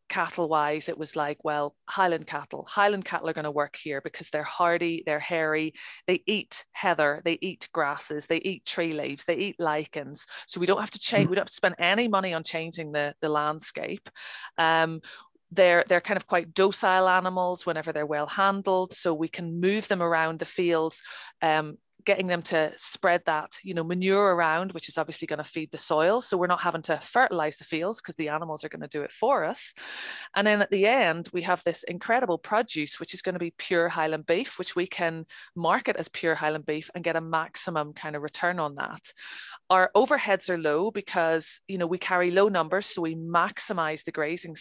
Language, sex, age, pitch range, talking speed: English, female, 30-49, 160-185 Hz, 210 wpm